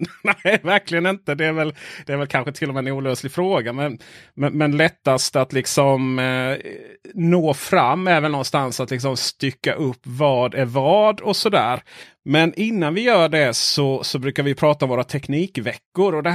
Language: Swedish